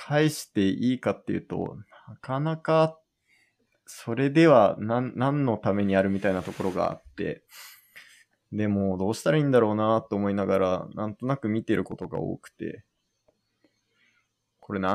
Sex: male